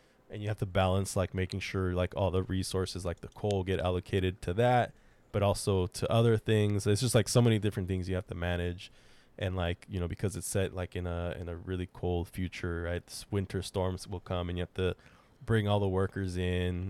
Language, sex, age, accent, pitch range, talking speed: English, male, 20-39, American, 90-105 Hz, 225 wpm